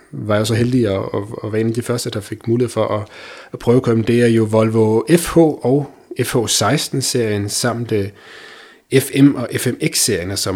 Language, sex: Danish, male